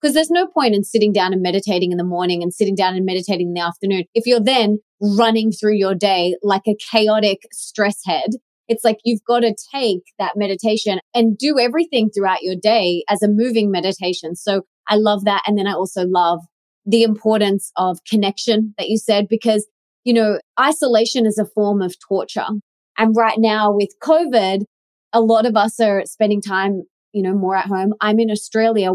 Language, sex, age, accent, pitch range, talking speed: English, female, 20-39, Australian, 195-230 Hz, 195 wpm